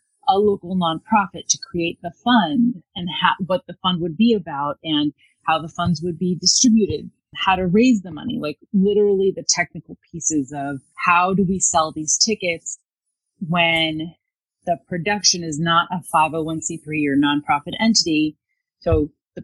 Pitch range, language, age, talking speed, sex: 165-205 Hz, English, 30-49, 155 wpm, female